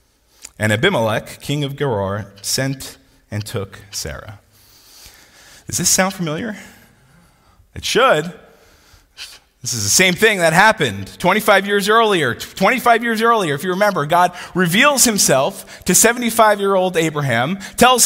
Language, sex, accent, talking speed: English, male, American, 125 wpm